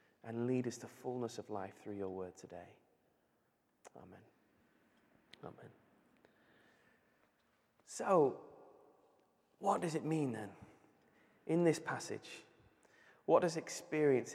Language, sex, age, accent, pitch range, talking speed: English, male, 20-39, British, 105-130 Hz, 105 wpm